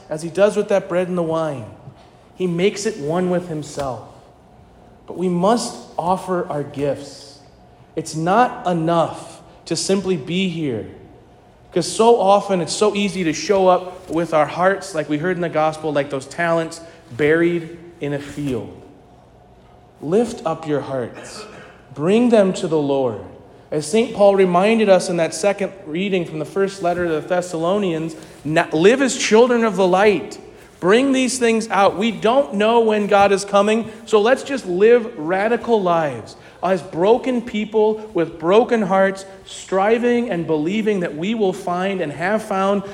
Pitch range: 155-200 Hz